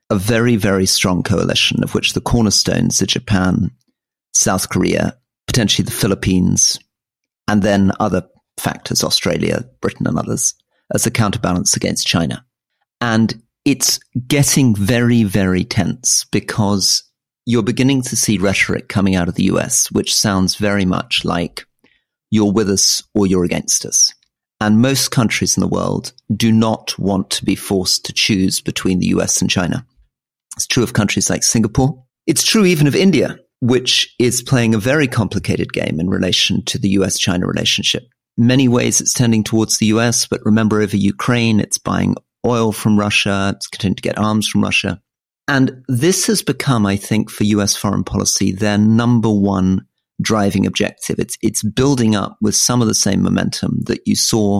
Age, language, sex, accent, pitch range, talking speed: 40-59, English, male, British, 100-120 Hz, 170 wpm